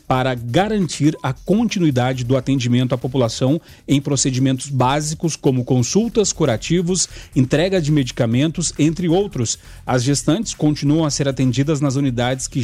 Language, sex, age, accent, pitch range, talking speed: Portuguese, male, 40-59, Brazilian, 125-155 Hz, 135 wpm